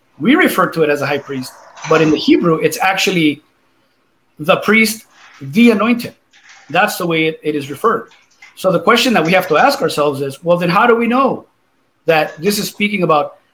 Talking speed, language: 205 wpm, English